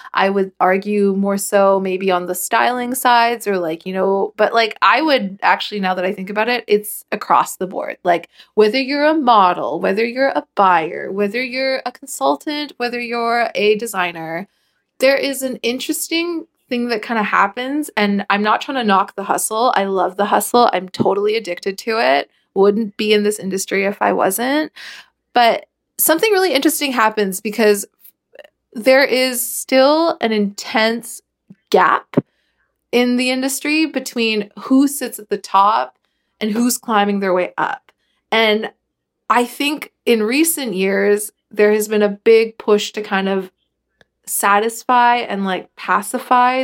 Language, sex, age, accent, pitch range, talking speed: English, female, 20-39, American, 200-255 Hz, 160 wpm